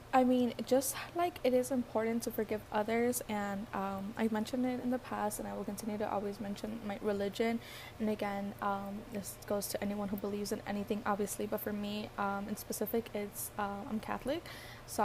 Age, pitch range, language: 10-29, 200-245 Hz, English